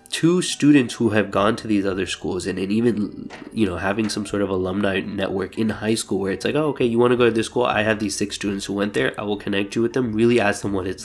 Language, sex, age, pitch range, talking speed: English, male, 20-39, 95-115 Hz, 295 wpm